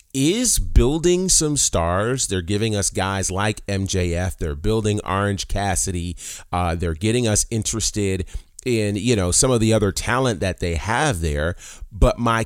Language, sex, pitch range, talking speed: English, male, 90-125 Hz, 160 wpm